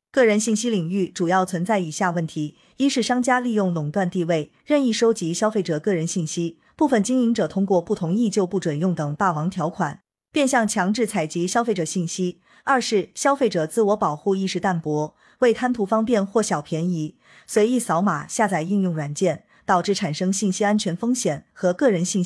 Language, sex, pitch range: Chinese, female, 175-225 Hz